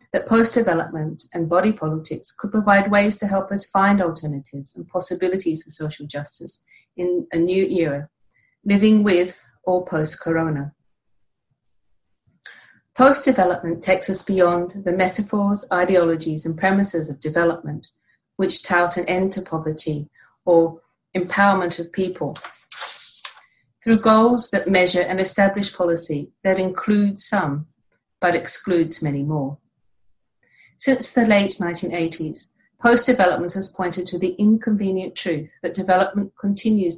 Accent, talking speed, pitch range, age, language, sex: British, 120 wpm, 160-195 Hz, 40-59, Spanish, female